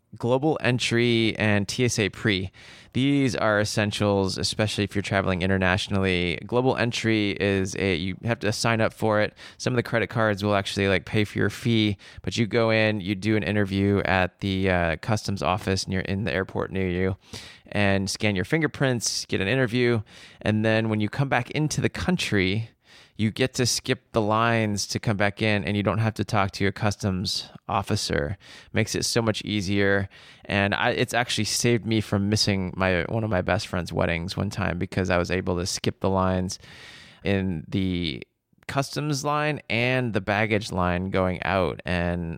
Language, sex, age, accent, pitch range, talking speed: English, male, 20-39, American, 95-115 Hz, 185 wpm